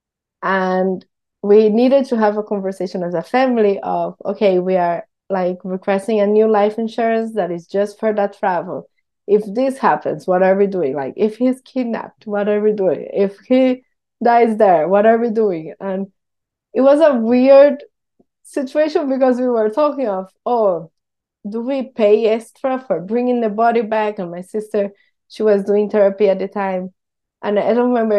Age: 20-39